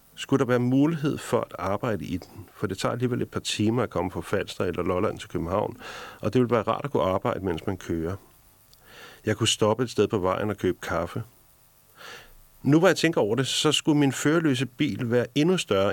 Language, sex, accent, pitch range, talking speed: Danish, male, native, 105-135 Hz, 220 wpm